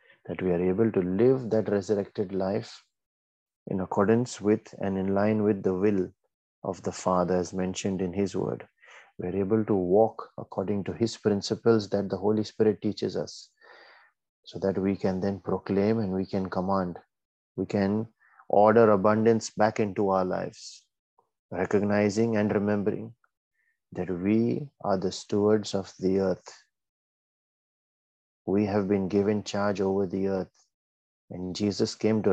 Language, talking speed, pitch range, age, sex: English, 150 wpm, 95-110 Hz, 30-49, male